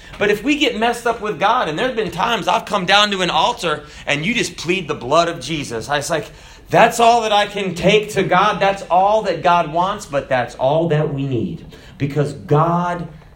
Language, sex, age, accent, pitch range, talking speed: English, male, 30-49, American, 145-190 Hz, 225 wpm